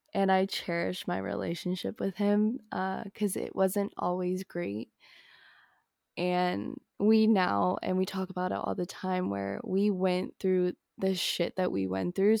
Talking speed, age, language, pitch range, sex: 165 wpm, 20-39, English, 180-215 Hz, female